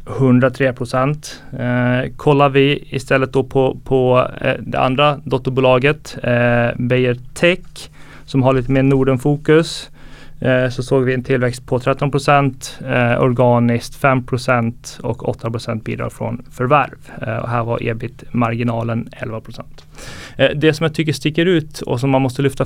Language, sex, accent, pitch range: Swedish, male, native, 120-140 Hz